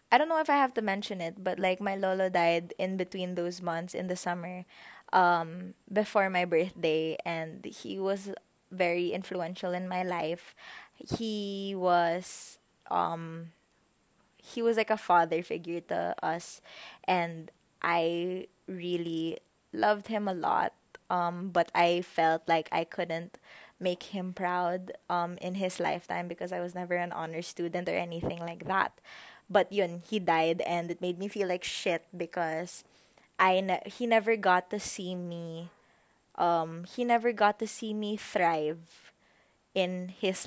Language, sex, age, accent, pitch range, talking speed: English, female, 20-39, Filipino, 170-200 Hz, 155 wpm